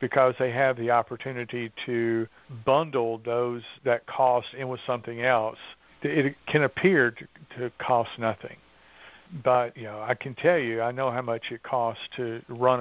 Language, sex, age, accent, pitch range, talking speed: English, male, 50-69, American, 115-125 Hz, 170 wpm